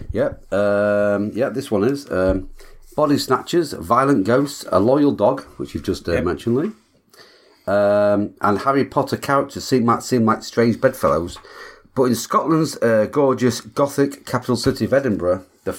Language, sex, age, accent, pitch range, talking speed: English, male, 40-59, British, 100-135 Hz, 165 wpm